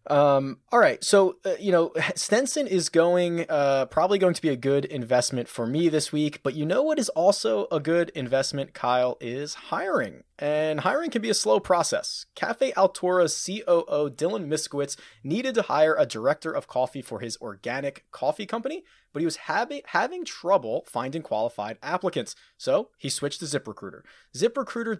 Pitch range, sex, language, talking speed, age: 135-190 Hz, male, English, 180 wpm, 20-39